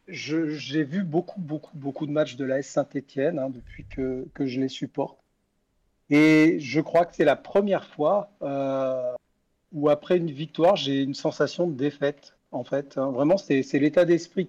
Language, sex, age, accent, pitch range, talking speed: French, male, 40-59, French, 140-170 Hz, 180 wpm